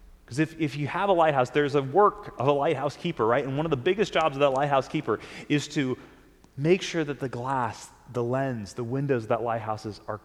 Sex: male